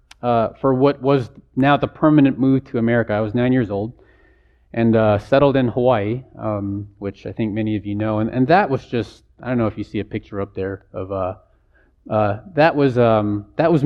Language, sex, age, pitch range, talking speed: English, male, 30-49, 105-135 Hz, 210 wpm